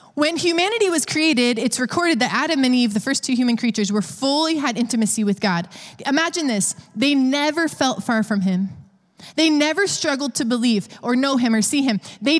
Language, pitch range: English, 205-285 Hz